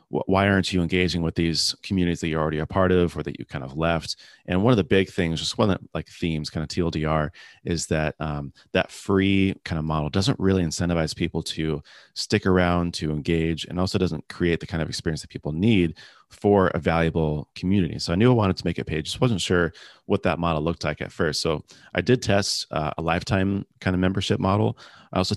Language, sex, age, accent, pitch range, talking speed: English, male, 30-49, American, 80-95 Hz, 225 wpm